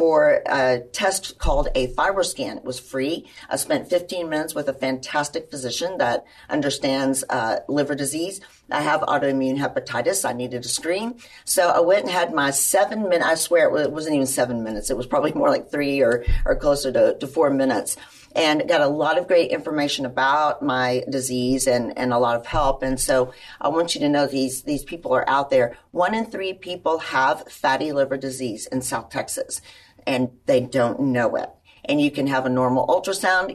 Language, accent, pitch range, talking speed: English, American, 130-175 Hz, 195 wpm